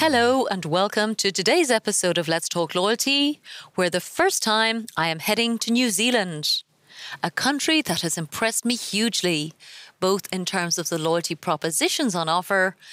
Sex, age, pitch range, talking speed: female, 30-49, 170-235 Hz, 165 wpm